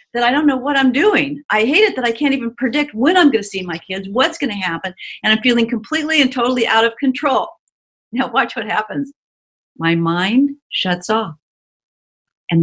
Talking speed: 200 wpm